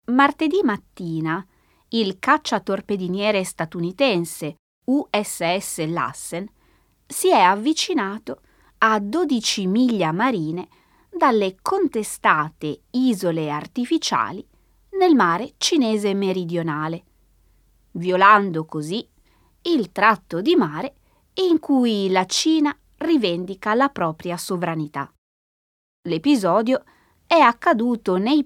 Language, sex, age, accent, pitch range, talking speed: Italian, female, 20-39, native, 170-265 Hz, 85 wpm